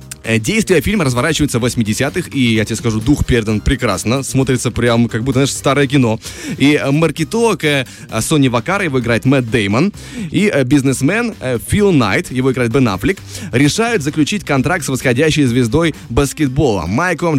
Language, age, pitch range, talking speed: Russian, 20-39, 120-155 Hz, 150 wpm